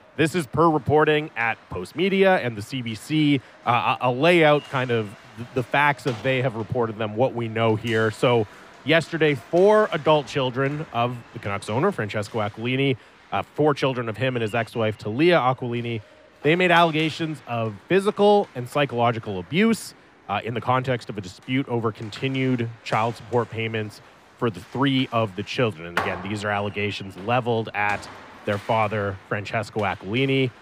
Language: English